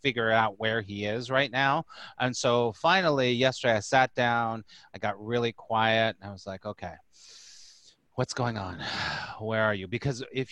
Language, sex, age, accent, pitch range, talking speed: English, male, 30-49, American, 110-135 Hz, 175 wpm